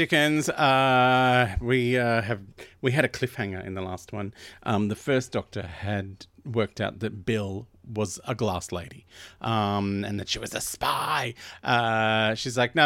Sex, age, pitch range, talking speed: male, 30-49, 95-120 Hz, 175 wpm